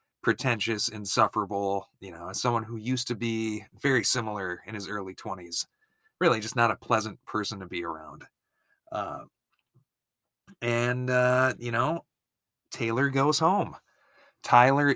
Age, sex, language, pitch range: 30-49, male, English, 110-135 Hz